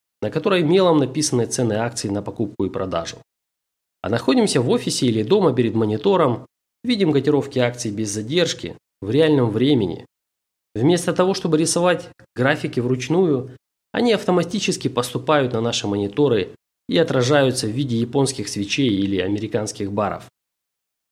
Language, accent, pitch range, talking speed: Russian, native, 110-155 Hz, 135 wpm